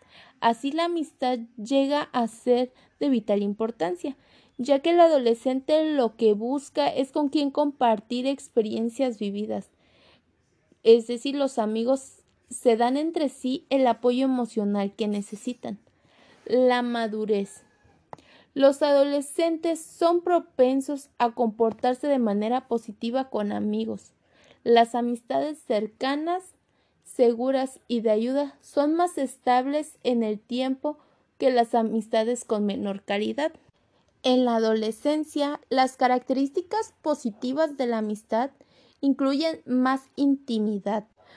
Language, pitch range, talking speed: Spanish, 225-285 Hz, 115 wpm